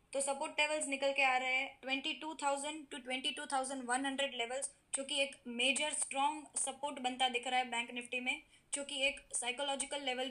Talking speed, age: 200 wpm, 20-39